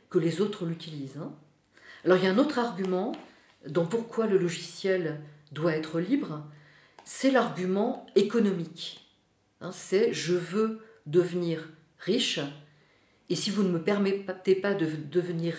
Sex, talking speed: female, 140 wpm